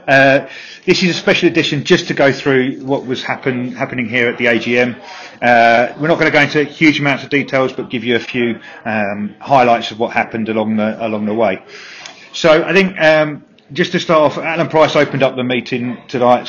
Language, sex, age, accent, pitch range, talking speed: English, male, 40-59, British, 115-140 Hz, 205 wpm